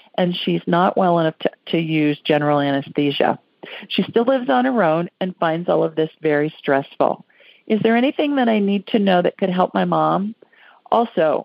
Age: 50-69